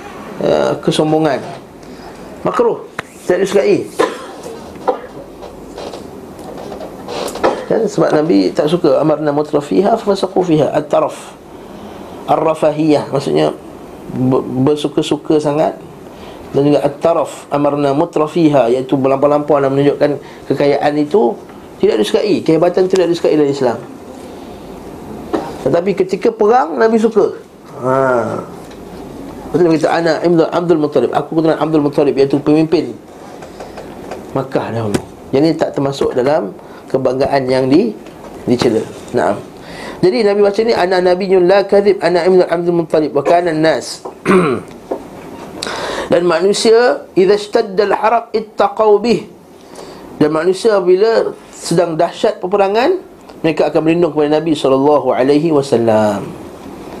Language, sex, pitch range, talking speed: Malay, male, 145-200 Hz, 105 wpm